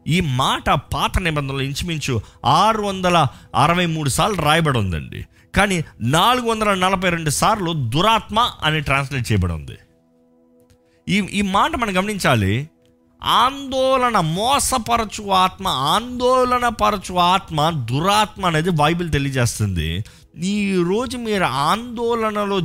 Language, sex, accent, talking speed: Telugu, male, native, 105 wpm